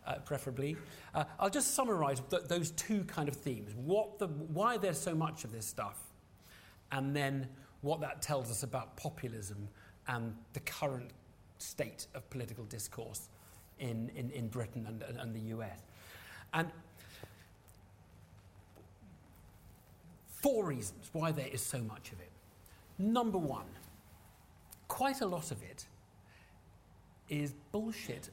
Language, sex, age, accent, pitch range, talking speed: English, male, 40-59, British, 100-155 Hz, 135 wpm